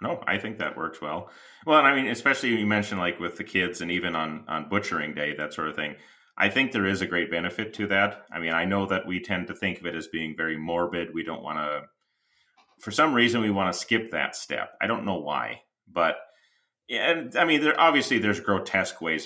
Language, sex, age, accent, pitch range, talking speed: English, male, 30-49, American, 85-105 Hz, 240 wpm